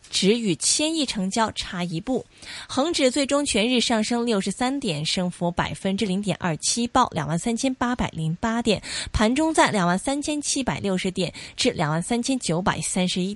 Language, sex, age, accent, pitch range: Chinese, female, 20-39, native, 185-260 Hz